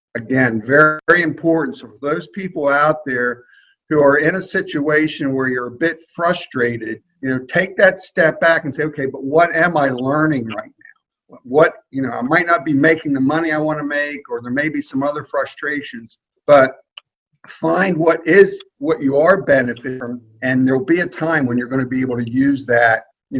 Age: 50-69